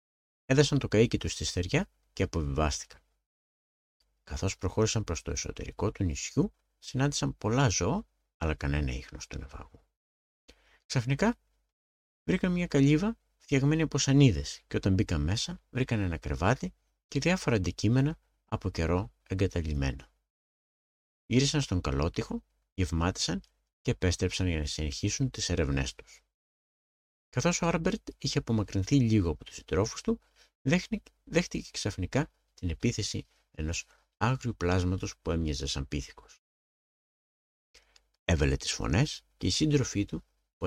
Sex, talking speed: male, 125 wpm